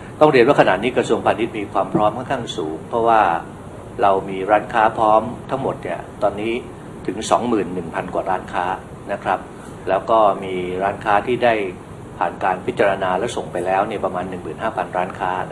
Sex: male